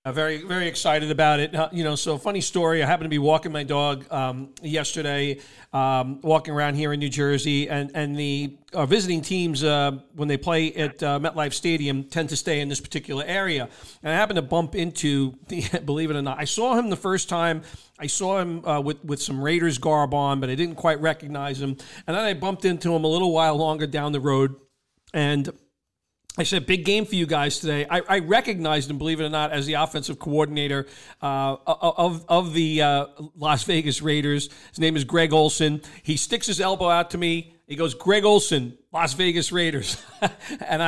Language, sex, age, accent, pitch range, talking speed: English, male, 40-59, American, 145-170 Hz, 210 wpm